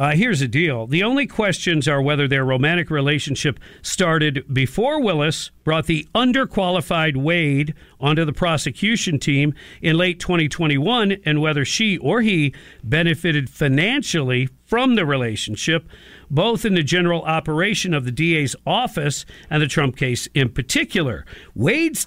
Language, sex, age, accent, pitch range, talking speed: English, male, 50-69, American, 140-180 Hz, 140 wpm